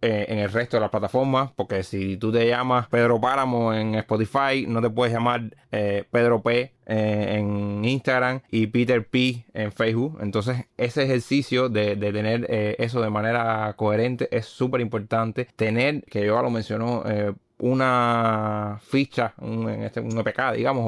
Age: 20-39